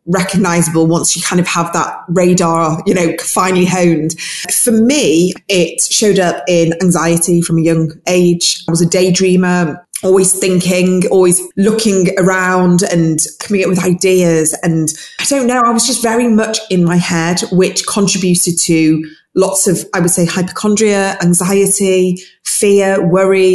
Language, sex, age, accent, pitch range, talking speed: English, female, 20-39, British, 165-185 Hz, 155 wpm